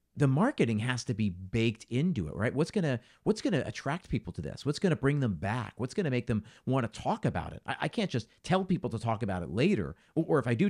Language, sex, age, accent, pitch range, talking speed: English, male, 40-59, American, 100-130 Hz, 265 wpm